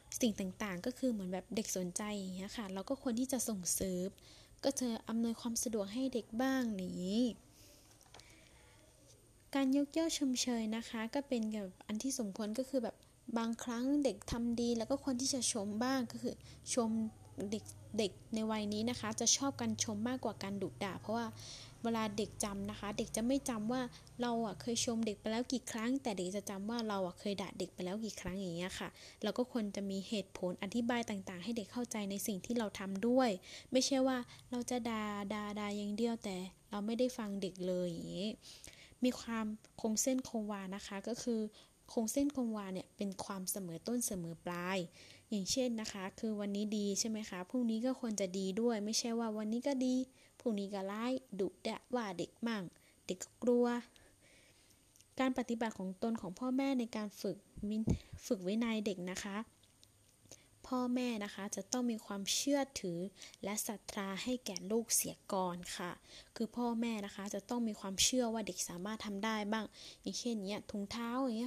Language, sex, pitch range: Thai, female, 200-245 Hz